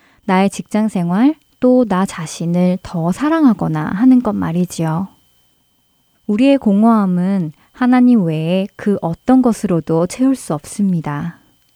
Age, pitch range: 20-39, 170-230 Hz